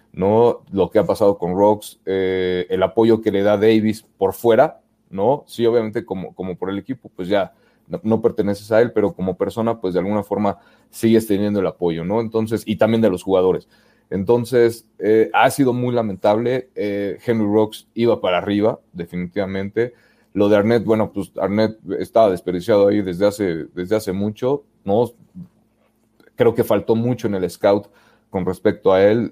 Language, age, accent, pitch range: Spanish, 30-49, Mexican, 95-115 Hz